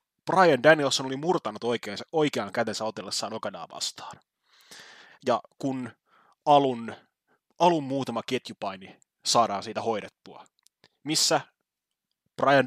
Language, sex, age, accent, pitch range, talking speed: English, male, 20-39, Finnish, 115-145 Hz, 95 wpm